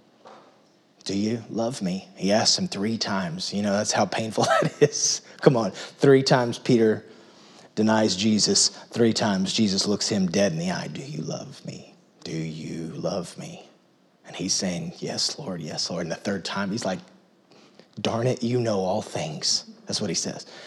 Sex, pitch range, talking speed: male, 115-165 Hz, 185 wpm